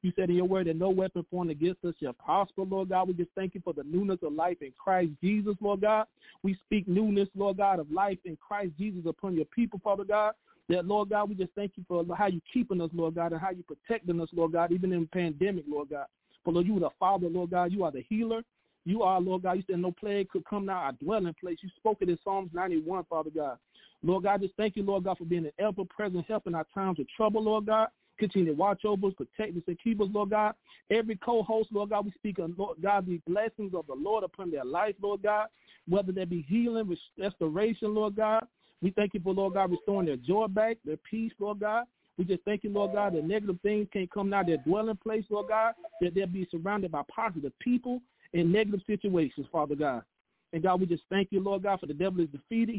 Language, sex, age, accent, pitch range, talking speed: English, male, 40-59, American, 175-210 Hz, 250 wpm